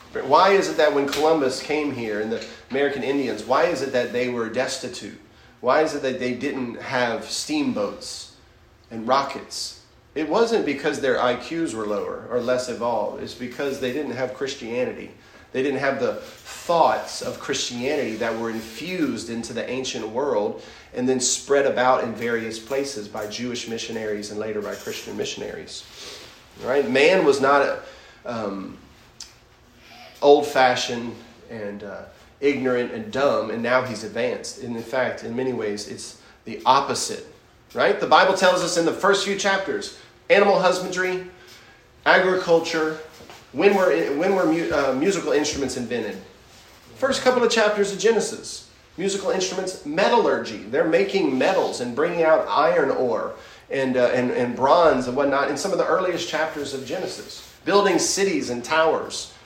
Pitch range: 120-165 Hz